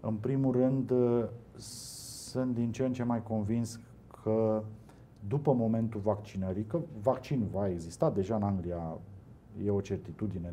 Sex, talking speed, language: male, 135 wpm, Romanian